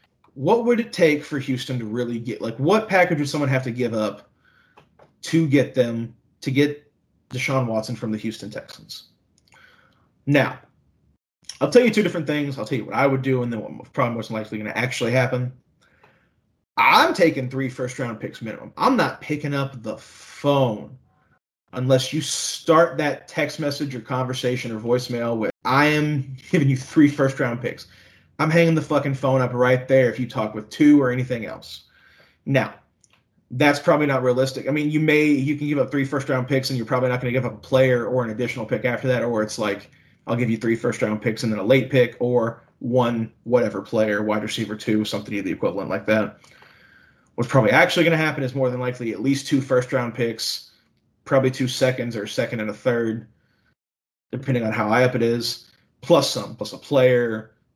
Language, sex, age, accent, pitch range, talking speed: English, male, 20-39, American, 115-140 Hz, 205 wpm